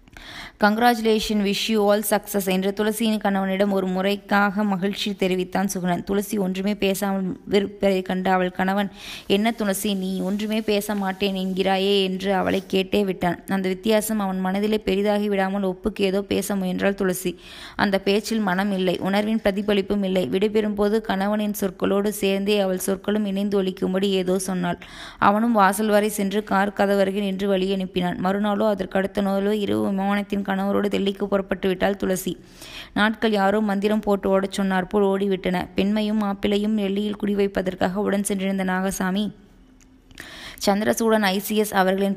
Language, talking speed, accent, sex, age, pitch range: Tamil, 115 wpm, native, female, 20-39, 190-205 Hz